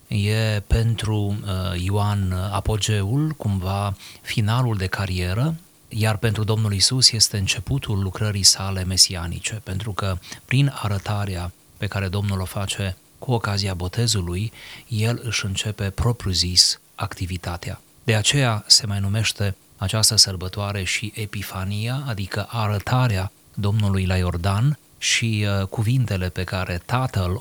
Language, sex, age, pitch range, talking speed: Romanian, male, 30-49, 95-115 Hz, 120 wpm